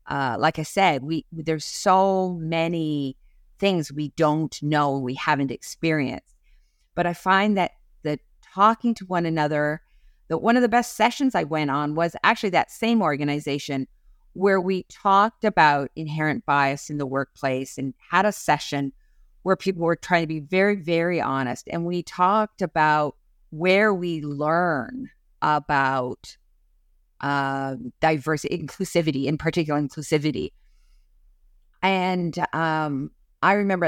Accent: American